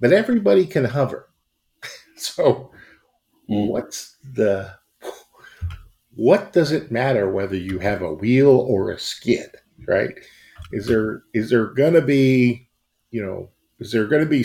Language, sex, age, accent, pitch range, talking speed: English, male, 50-69, American, 100-125 Hz, 135 wpm